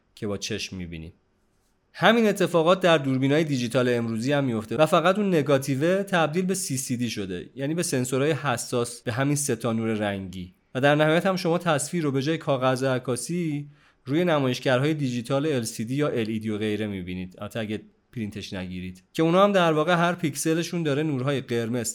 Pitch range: 110-150 Hz